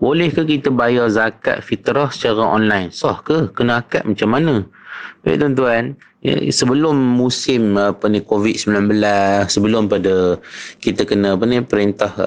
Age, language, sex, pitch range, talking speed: 30-49, Malay, male, 95-115 Hz, 135 wpm